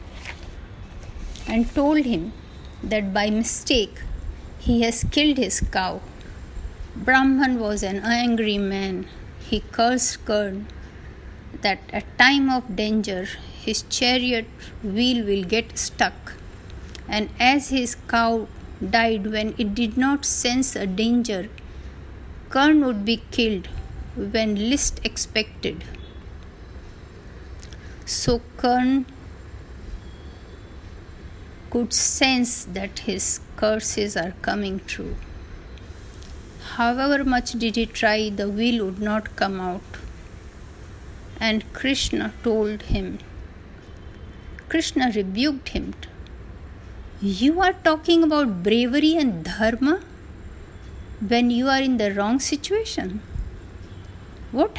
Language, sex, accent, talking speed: Hindi, female, native, 100 wpm